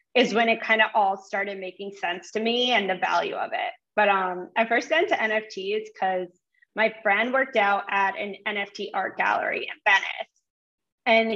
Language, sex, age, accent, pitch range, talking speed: English, female, 20-39, American, 215-270 Hz, 190 wpm